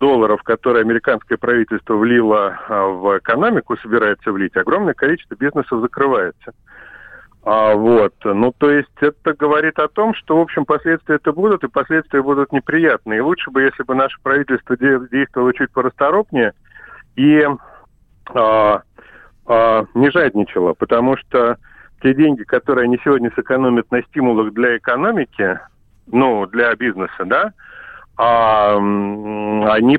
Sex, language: male, Russian